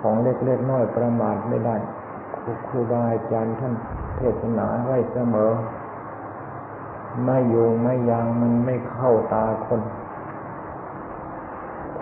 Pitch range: 115-120 Hz